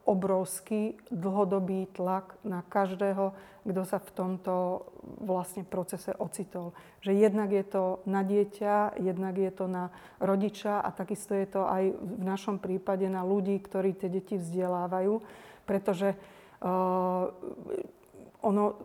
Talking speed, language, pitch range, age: 125 wpm, Slovak, 190-205 Hz, 40-59